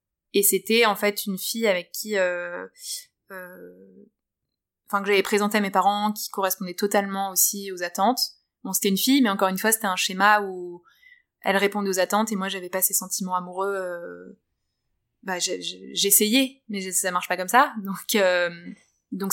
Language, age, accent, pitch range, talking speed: French, 20-39, French, 190-230 Hz, 190 wpm